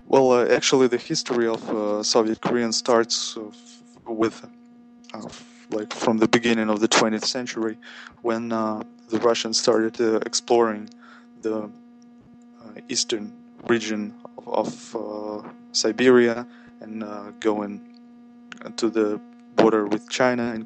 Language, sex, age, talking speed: English, male, 20-39, 130 wpm